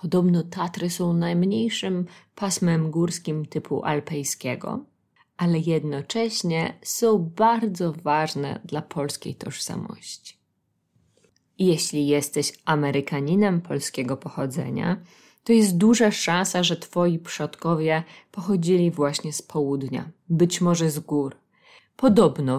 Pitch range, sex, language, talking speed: 150-190 Hz, female, Polish, 100 wpm